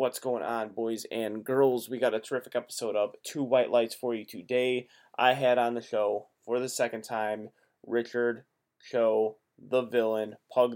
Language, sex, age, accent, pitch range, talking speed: English, male, 20-39, American, 110-125 Hz, 180 wpm